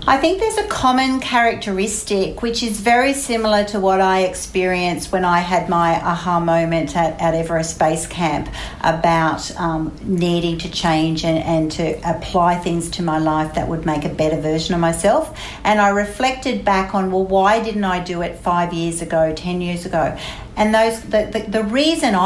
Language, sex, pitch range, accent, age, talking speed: English, female, 175-220 Hz, Australian, 60-79, 185 wpm